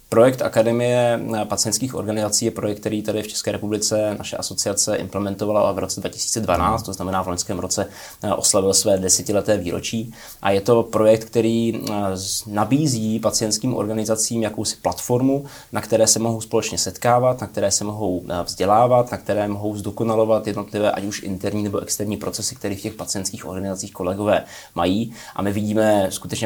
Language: Czech